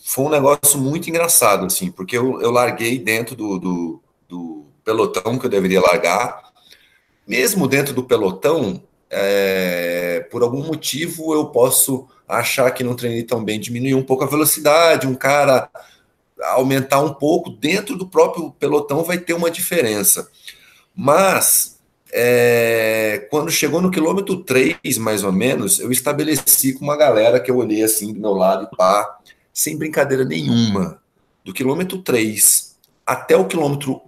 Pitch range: 105-150 Hz